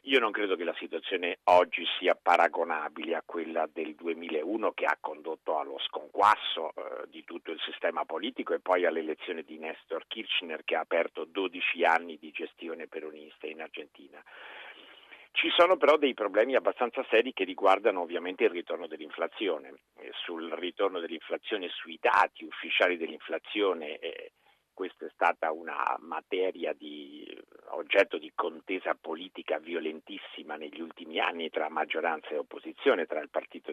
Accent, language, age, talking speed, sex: native, Italian, 50-69, 145 wpm, male